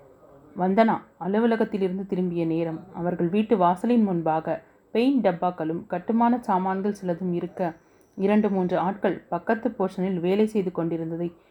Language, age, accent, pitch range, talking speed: Tamil, 30-49, native, 165-205 Hz, 115 wpm